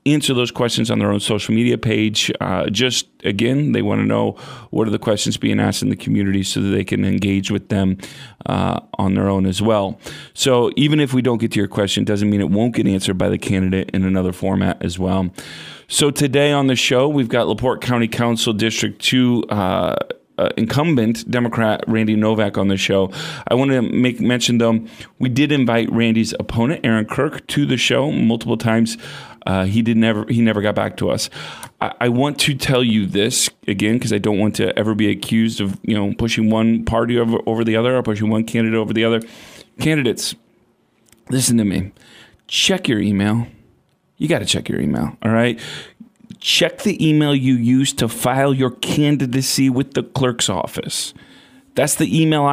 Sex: male